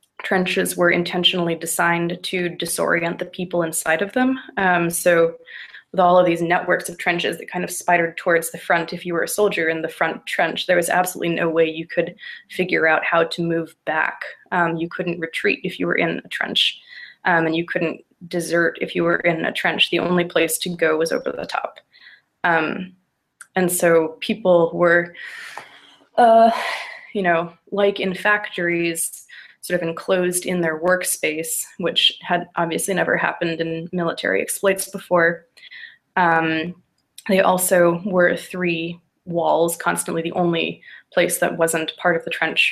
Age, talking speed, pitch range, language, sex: 20-39, 170 wpm, 165-180 Hz, English, female